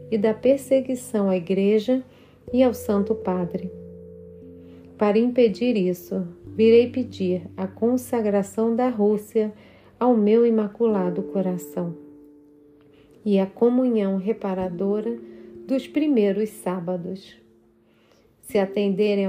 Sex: female